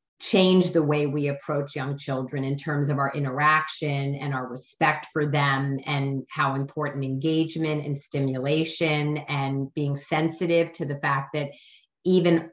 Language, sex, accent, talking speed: English, female, American, 150 wpm